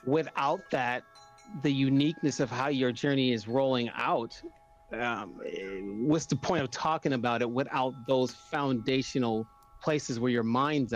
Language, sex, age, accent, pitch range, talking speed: English, male, 40-59, American, 120-150 Hz, 140 wpm